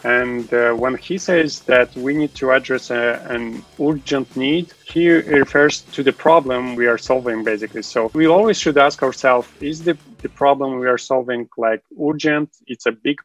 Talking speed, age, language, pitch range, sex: 180 wpm, 30-49, Romanian, 120-140 Hz, male